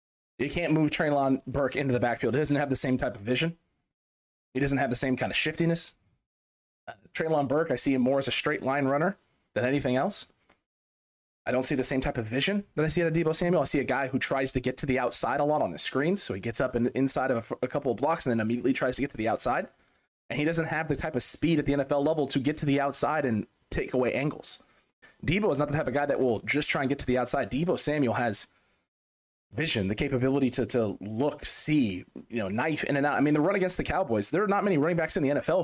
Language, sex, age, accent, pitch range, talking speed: English, male, 30-49, American, 125-150 Hz, 270 wpm